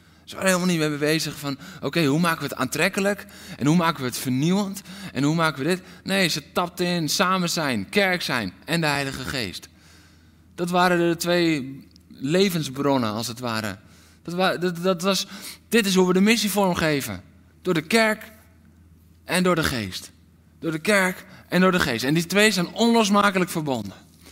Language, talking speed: Dutch, 185 wpm